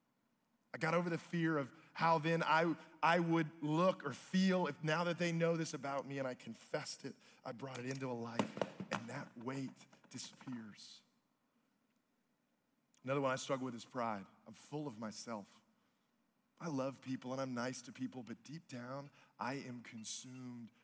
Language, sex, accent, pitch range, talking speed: English, male, American, 140-220 Hz, 175 wpm